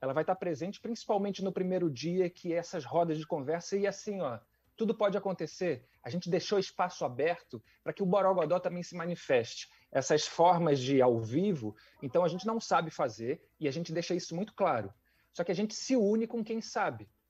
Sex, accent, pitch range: male, Brazilian, 155-195 Hz